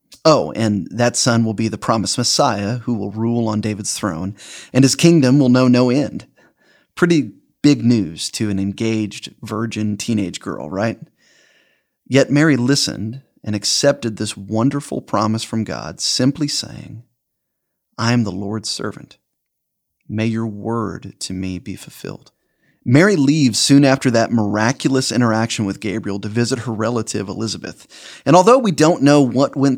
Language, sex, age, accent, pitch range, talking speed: English, male, 30-49, American, 110-140 Hz, 155 wpm